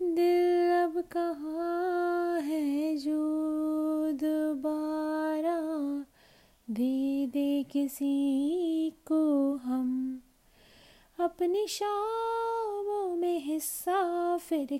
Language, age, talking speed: Hindi, 30-49, 65 wpm